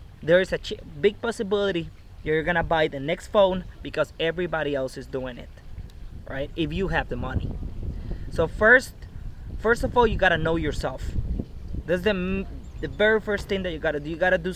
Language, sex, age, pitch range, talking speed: English, male, 20-39, 140-200 Hz, 200 wpm